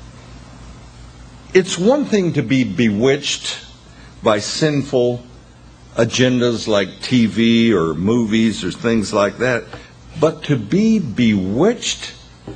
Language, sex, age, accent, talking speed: English, male, 60-79, American, 100 wpm